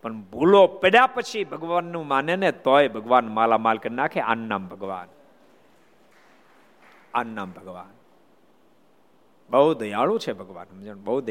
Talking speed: 90 wpm